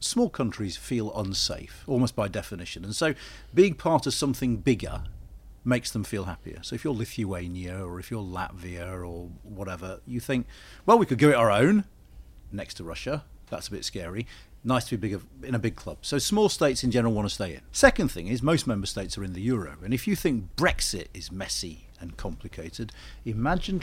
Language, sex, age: English, male, 50-69